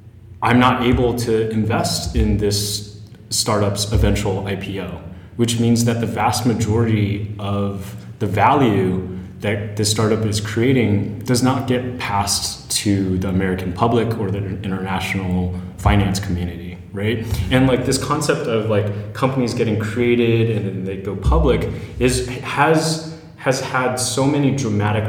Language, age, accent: English, 30-49, American